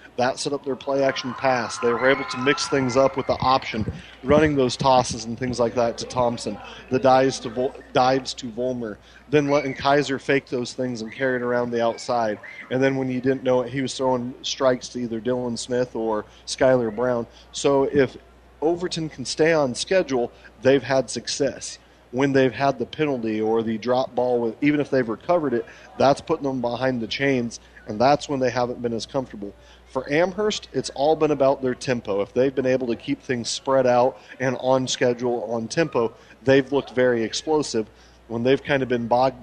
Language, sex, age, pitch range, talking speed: English, male, 40-59, 115-135 Hz, 200 wpm